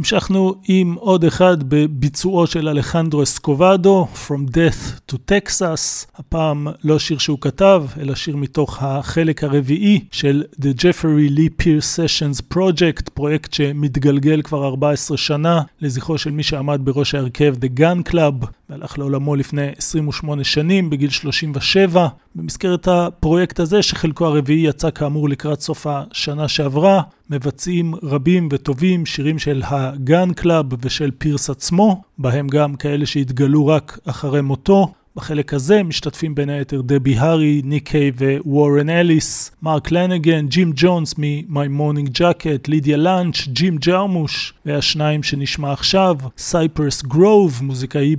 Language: Hebrew